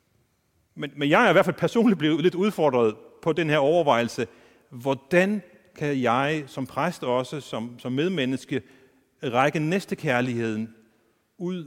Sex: male